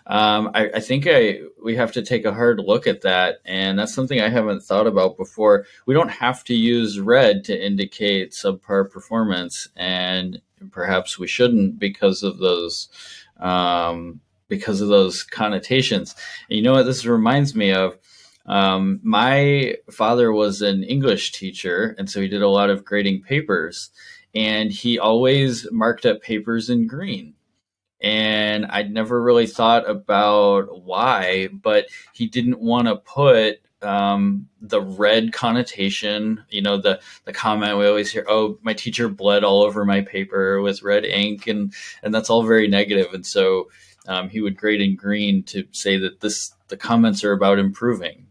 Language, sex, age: English, male, 20-39